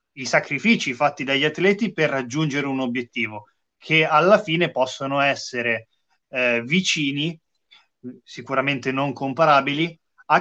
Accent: native